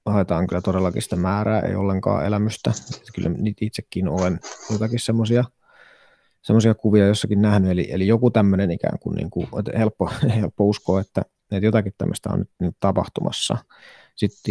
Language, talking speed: Finnish, 150 wpm